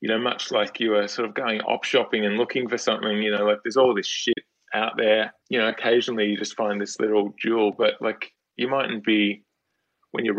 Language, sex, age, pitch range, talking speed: English, male, 20-39, 100-115 Hz, 230 wpm